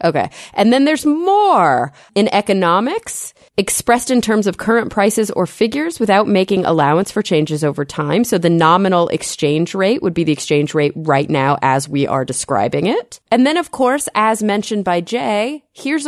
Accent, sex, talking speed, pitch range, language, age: American, female, 180 wpm, 155-210 Hz, English, 30-49